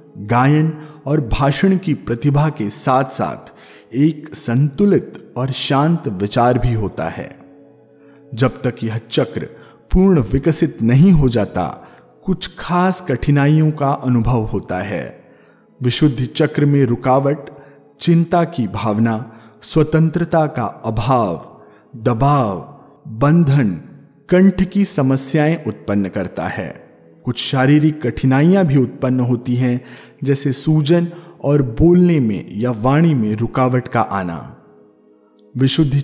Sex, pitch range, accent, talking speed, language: male, 115-155 Hz, native, 115 wpm, Hindi